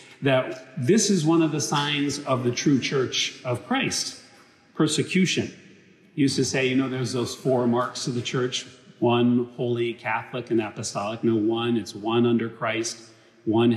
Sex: male